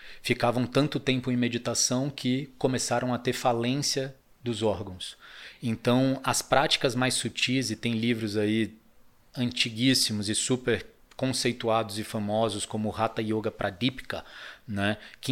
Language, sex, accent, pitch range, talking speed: Portuguese, male, Brazilian, 115-135 Hz, 135 wpm